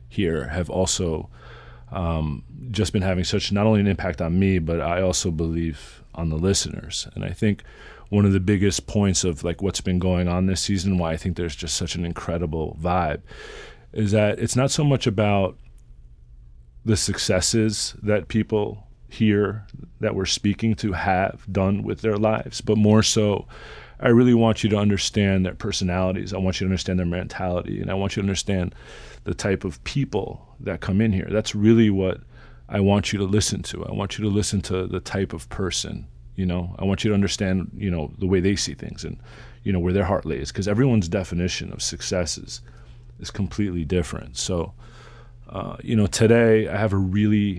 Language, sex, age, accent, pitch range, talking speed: English, male, 30-49, American, 85-105 Hz, 195 wpm